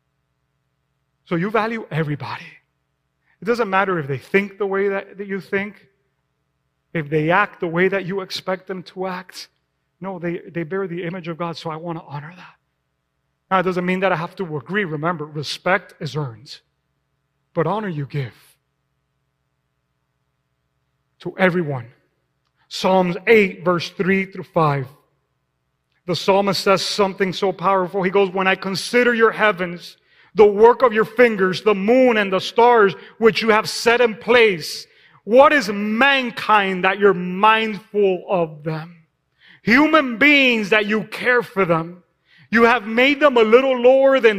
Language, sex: English, male